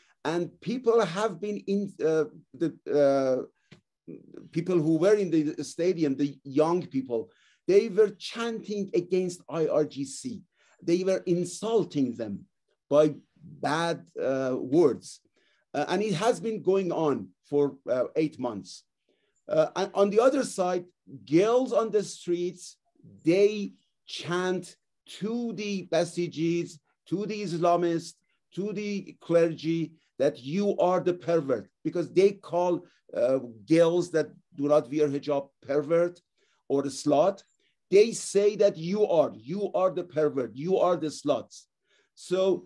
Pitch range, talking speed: 155-200 Hz, 135 wpm